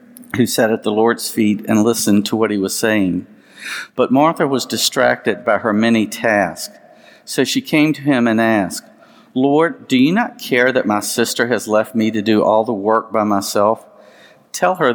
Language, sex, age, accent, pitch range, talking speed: English, male, 50-69, American, 105-125 Hz, 195 wpm